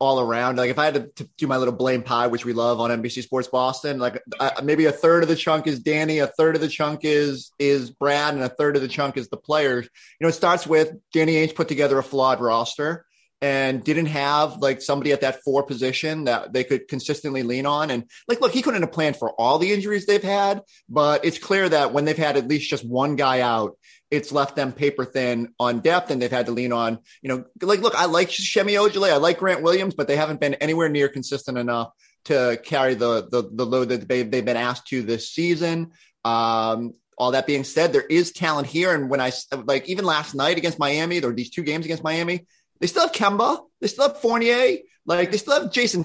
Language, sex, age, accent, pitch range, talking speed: English, male, 30-49, American, 130-165 Hz, 240 wpm